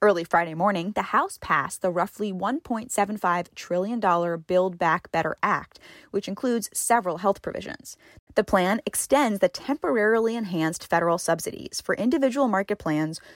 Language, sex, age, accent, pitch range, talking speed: English, female, 10-29, American, 170-225 Hz, 140 wpm